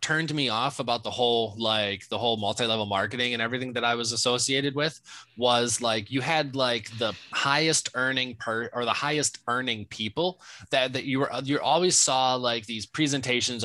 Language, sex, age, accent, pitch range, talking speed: English, male, 20-39, American, 115-140 Hz, 185 wpm